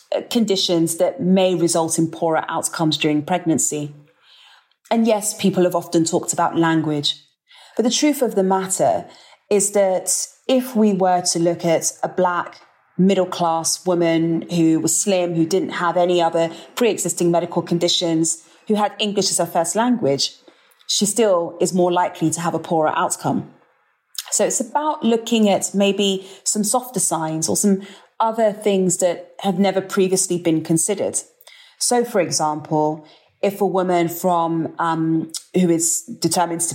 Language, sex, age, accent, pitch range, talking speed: English, female, 30-49, British, 165-195 Hz, 155 wpm